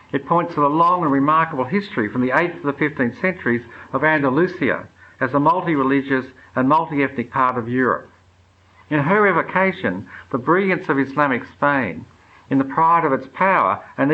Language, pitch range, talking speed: English, 125-160 Hz, 170 wpm